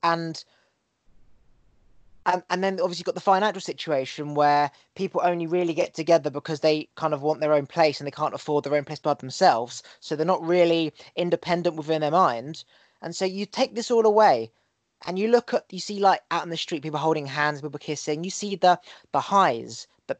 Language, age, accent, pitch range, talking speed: English, 20-39, British, 150-190 Hz, 210 wpm